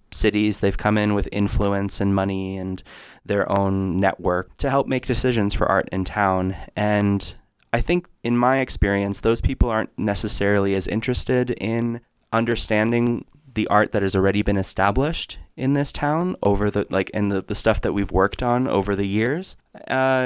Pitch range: 95-115 Hz